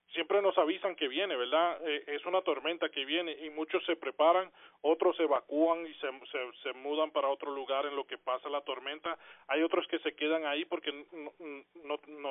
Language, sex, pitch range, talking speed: Spanish, male, 150-180 Hz, 210 wpm